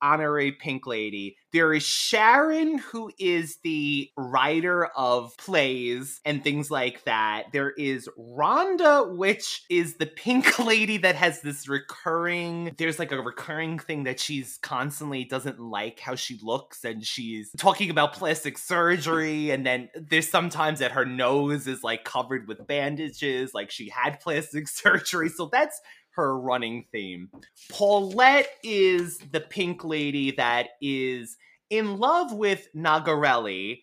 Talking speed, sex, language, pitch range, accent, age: 140 wpm, male, English, 130-175 Hz, American, 20-39